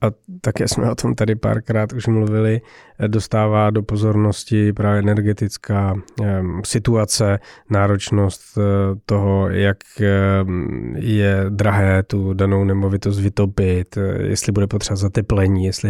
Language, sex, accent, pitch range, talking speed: Czech, male, native, 100-110 Hz, 110 wpm